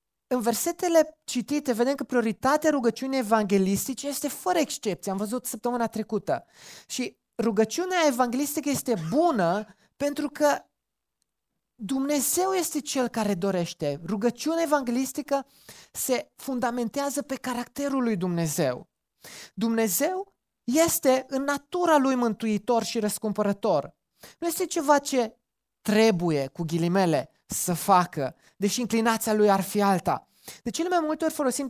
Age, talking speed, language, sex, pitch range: 20-39, 120 wpm, Romanian, male, 200-280 Hz